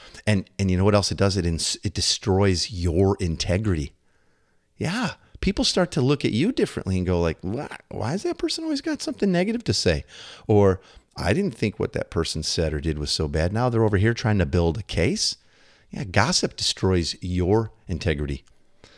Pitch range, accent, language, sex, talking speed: 85-115 Hz, American, English, male, 195 wpm